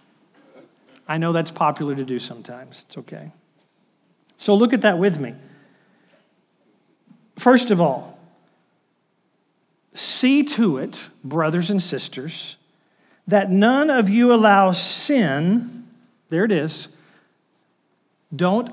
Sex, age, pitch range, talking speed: male, 50-69, 185-260 Hz, 110 wpm